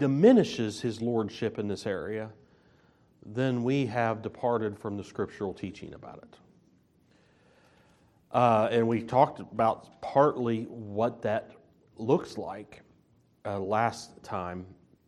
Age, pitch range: 40-59, 110-135 Hz